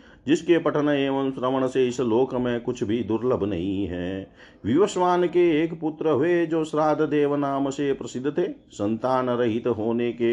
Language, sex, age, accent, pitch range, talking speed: Hindi, male, 40-59, native, 110-145 Hz, 170 wpm